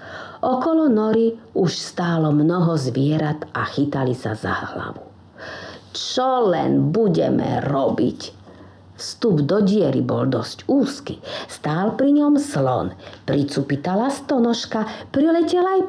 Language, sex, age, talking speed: Slovak, female, 50-69, 110 wpm